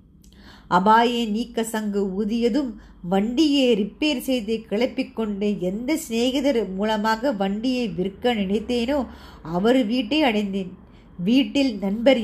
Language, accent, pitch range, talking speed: Tamil, native, 220-290 Hz, 95 wpm